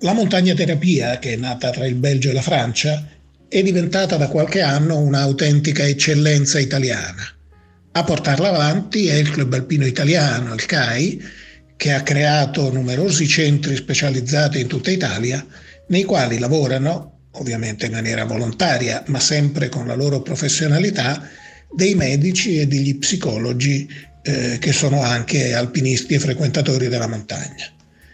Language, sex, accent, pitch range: Italian, male, native, 130-155 Hz